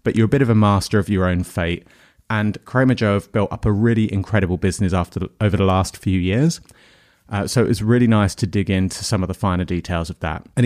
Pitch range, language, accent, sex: 95-115 Hz, English, British, male